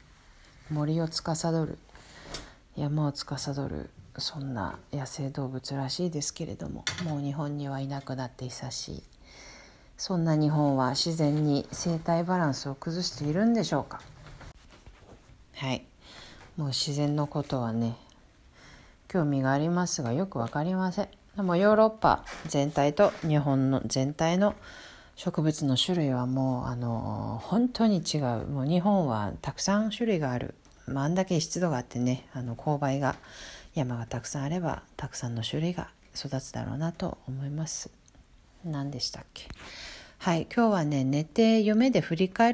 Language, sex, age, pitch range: Japanese, female, 40-59, 130-170 Hz